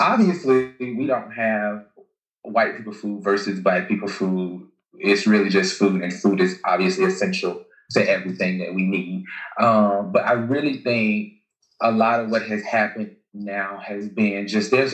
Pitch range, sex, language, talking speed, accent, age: 100-120 Hz, male, English, 165 wpm, American, 20-39